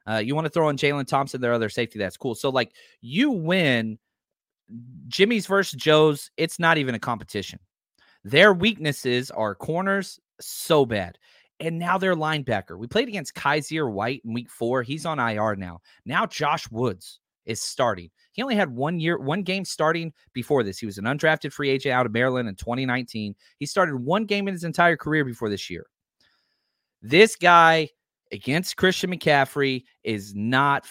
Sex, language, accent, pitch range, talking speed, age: male, English, American, 120-160 Hz, 175 wpm, 30-49